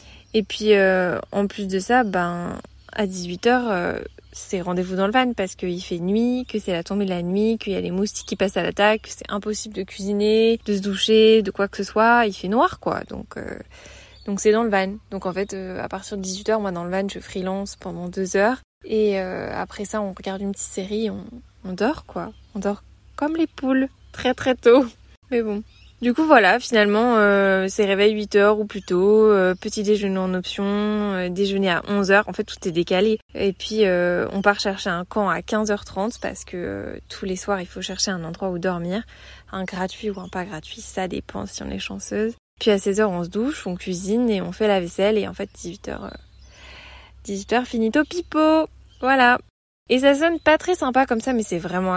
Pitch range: 190-220 Hz